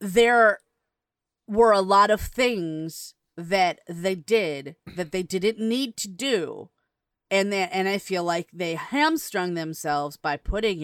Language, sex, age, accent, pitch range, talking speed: English, female, 30-49, American, 165-220 Hz, 145 wpm